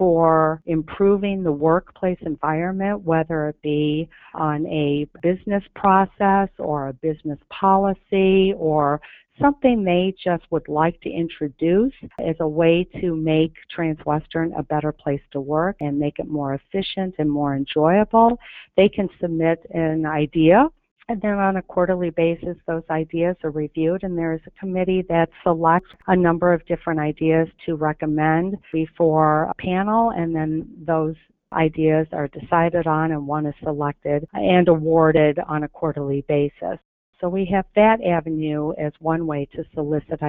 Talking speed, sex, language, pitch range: 150 wpm, female, English, 155-190 Hz